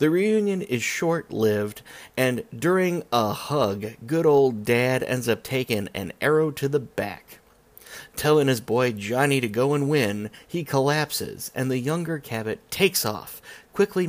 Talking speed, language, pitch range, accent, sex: 155 wpm, English, 110-150 Hz, American, male